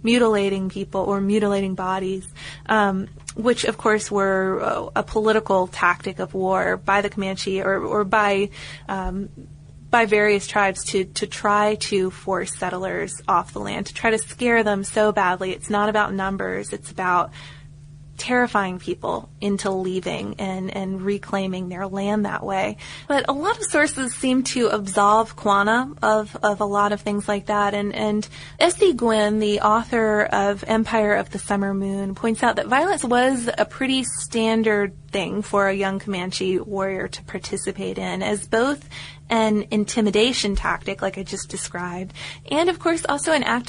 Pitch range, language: 190-225 Hz, English